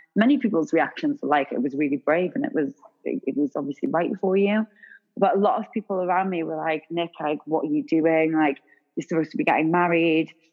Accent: British